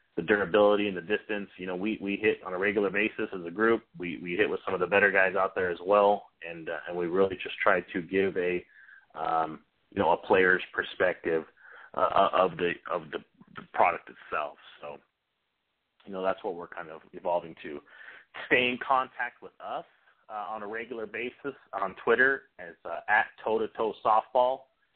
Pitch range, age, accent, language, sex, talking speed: 95-115 Hz, 30-49, American, English, male, 195 wpm